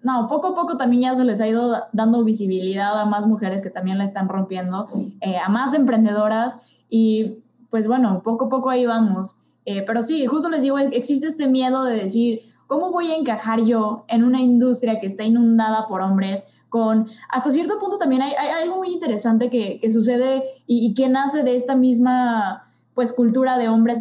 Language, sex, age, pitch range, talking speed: Spanish, female, 20-39, 215-260 Hz, 200 wpm